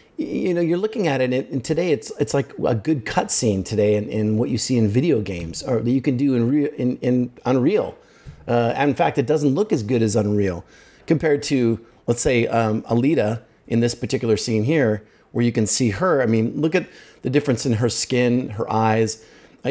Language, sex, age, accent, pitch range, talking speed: English, male, 40-59, American, 110-135 Hz, 225 wpm